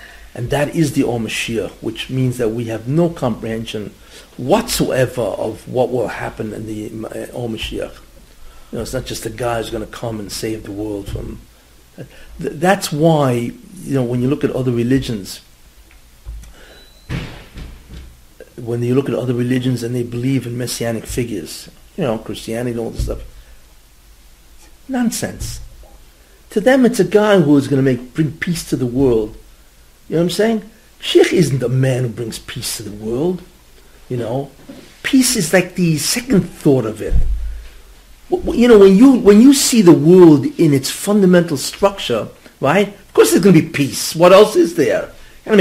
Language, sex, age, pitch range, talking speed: English, male, 50-69, 115-180 Hz, 175 wpm